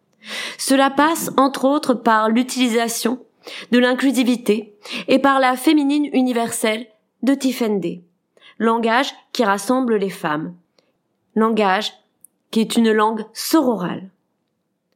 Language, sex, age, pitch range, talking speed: French, female, 20-39, 210-260 Hz, 105 wpm